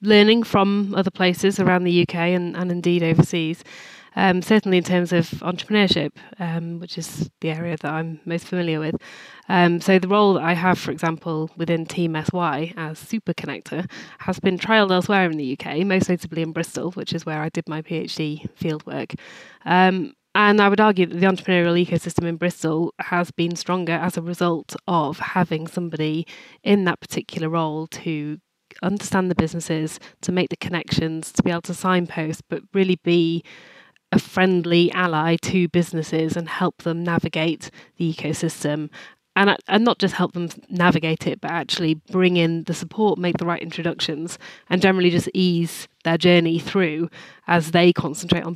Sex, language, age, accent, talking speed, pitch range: female, English, 20-39, British, 175 wpm, 165-185 Hz